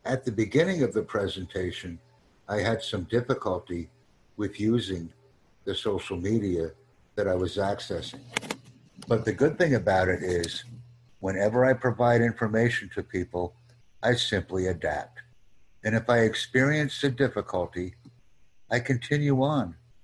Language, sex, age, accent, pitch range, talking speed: English, male, 60-79, American, 95-125 Hz, 130 wpm